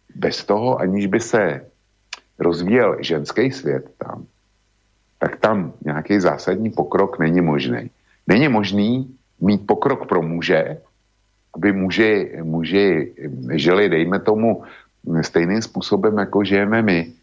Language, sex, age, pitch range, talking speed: Slovak, male, 50-69, 80-110 Hz, 115 wpm